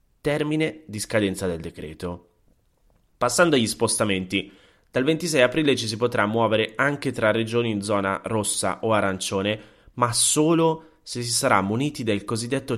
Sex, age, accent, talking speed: male, 20-39, native, 145 wpm